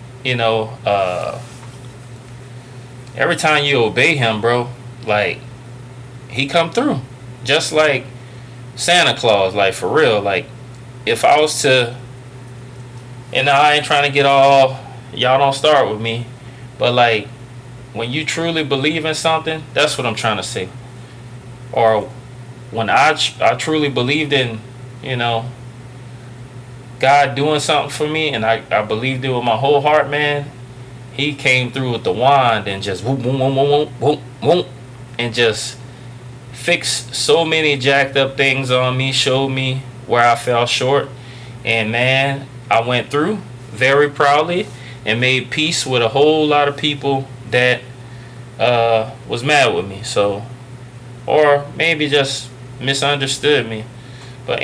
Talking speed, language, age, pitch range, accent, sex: 150 wpm, English, 20-39, 120-140 Hz, American, male